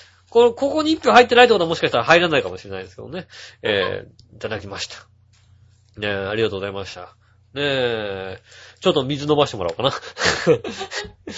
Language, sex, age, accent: Japanese, male, 30-49, native